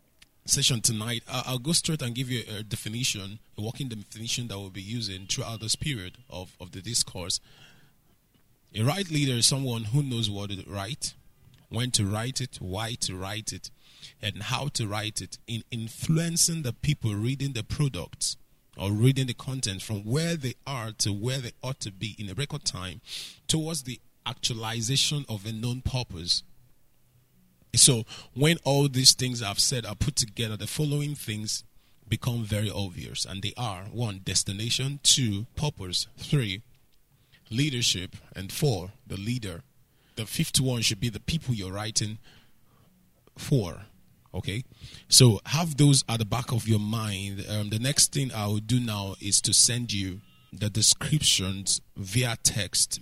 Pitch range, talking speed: 100-130 Hz, 165 wpm